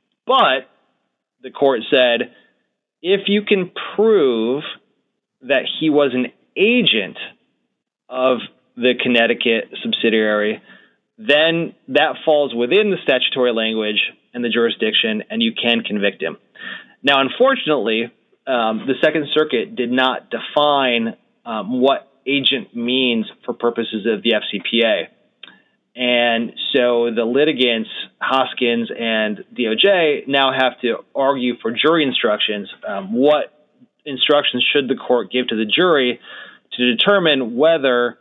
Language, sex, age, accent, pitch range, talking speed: English, male, 30-49, American, 115-145 Hz, 120 wpm